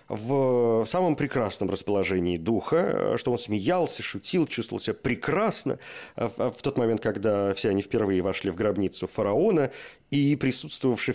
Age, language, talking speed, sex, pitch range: 40-59, Russian, 135 wpm, male, 100-125 Hz